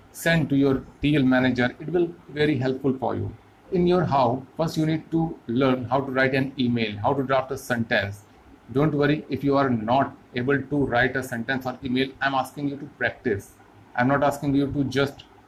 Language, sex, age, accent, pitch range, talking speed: Hindi, male, 30-49, native, 120-145 Hz, 215 wpm